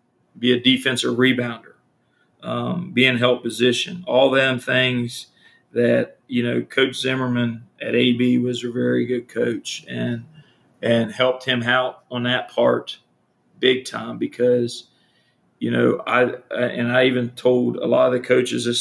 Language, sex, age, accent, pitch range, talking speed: English, male, 40-59, American, 120-130 Hz, 155 wpm